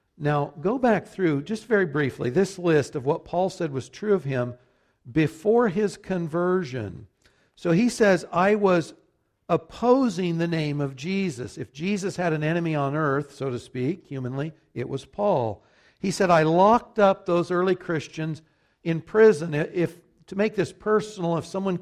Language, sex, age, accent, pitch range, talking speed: English, male, 60-79, American, 140-190 Hz, 170 wpm